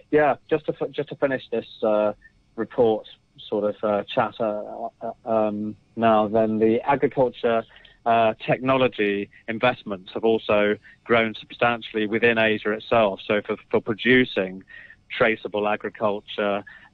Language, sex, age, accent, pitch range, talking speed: English, male, 30-49, British, 105-120 Hz, 130 wpm